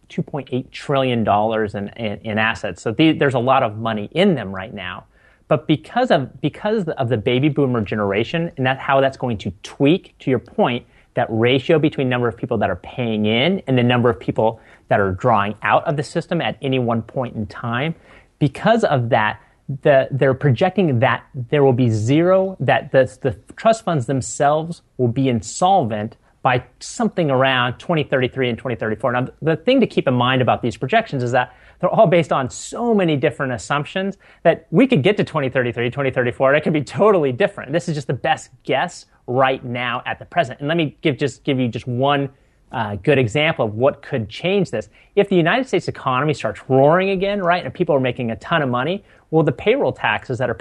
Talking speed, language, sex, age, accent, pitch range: 205 wpm, English, male, 30-49, American, 120-160 Hz